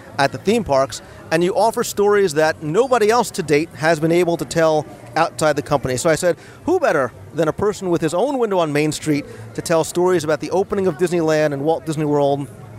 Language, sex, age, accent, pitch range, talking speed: English, male, 40-59, American, 150-195 Hz, 225 wpm